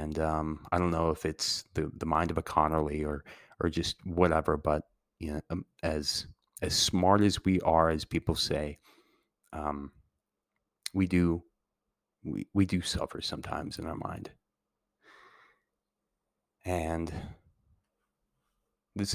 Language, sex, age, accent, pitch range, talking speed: English, male, 30-49, American, 80-90 Hz, 130 wpm